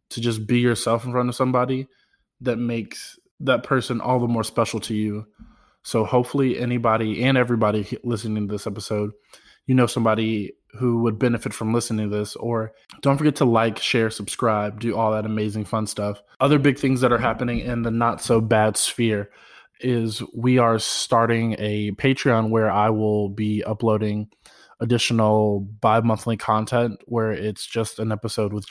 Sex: male